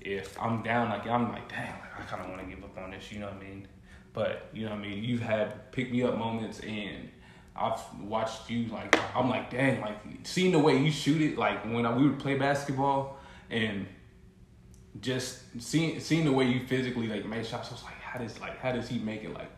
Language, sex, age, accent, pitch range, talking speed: English, male, 20-39, American, 105-135 Hz, 235 wpm